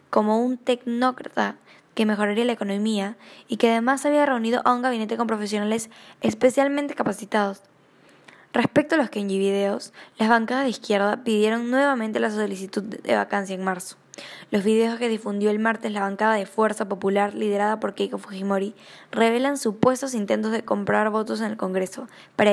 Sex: female